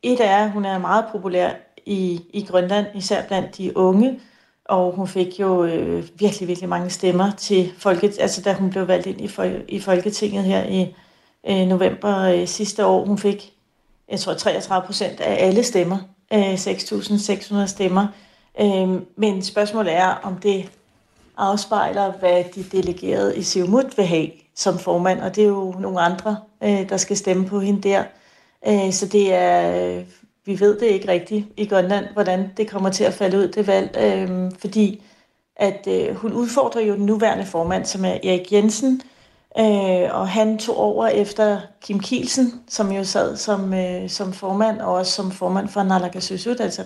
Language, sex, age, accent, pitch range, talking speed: Danish, female, 40-59, native, 185-210 Hz, 175 wpm